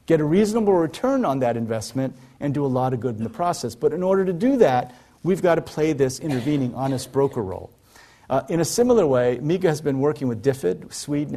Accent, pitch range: American, 120-155 Hz